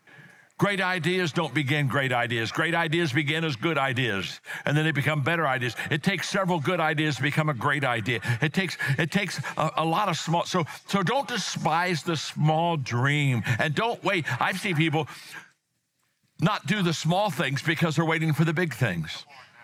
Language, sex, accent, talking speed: English, male, American, 190 wpm